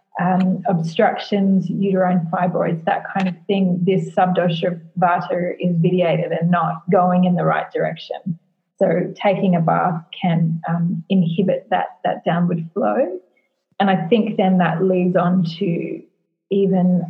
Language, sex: English, female